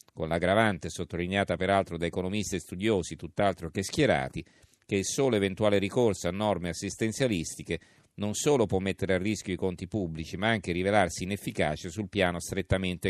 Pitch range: 85-105 Hz